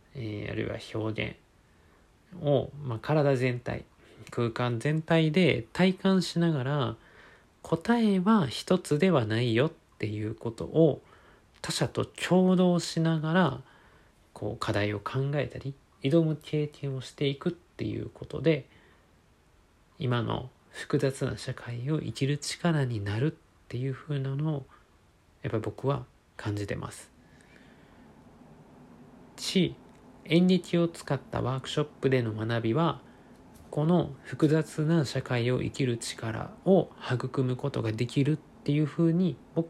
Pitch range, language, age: 110-155 Hz, Japanese, 40-59